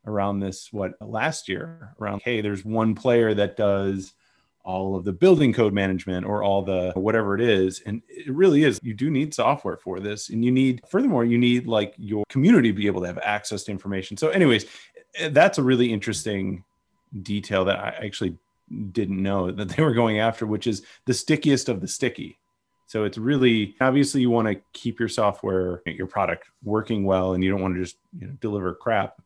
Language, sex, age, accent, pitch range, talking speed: English, male, 30-49, American, 95-120 Hz, 200 wpm